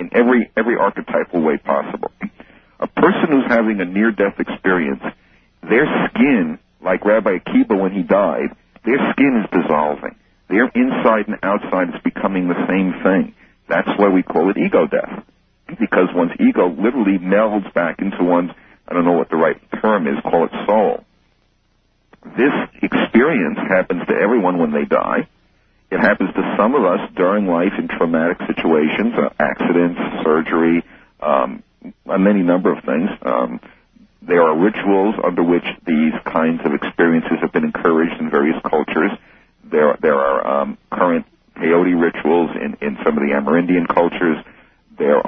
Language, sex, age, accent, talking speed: English, male, 60-79, American, 160 wpm